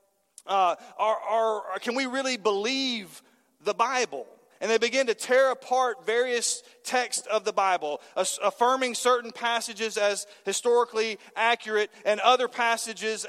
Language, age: English, 40-59